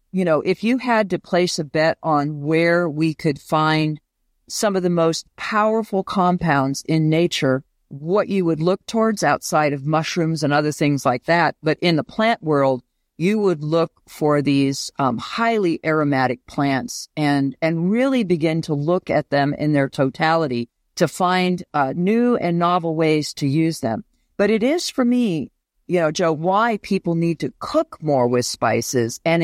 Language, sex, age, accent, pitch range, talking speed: English, female, 50-69, American, 145-180 Hz, 175 wpm